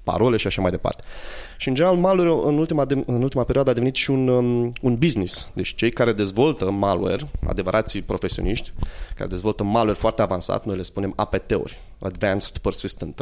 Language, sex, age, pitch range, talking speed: Romanian, male, 20-39, 100-135 Hz, 180 wpm